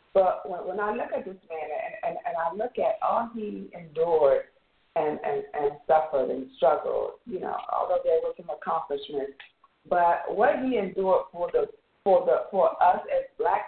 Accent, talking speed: American, 180 wpm